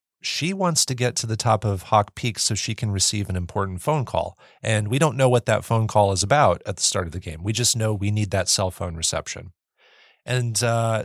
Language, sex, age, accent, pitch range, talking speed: English, male, 30-49, American, 105-125 Hz, 245 wpm